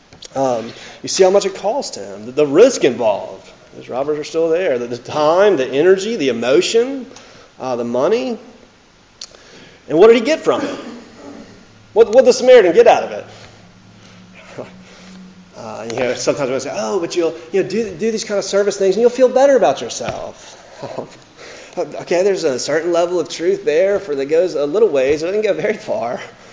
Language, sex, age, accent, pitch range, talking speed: English, male, 30-49, American, 135-225 Hz, 195 wpm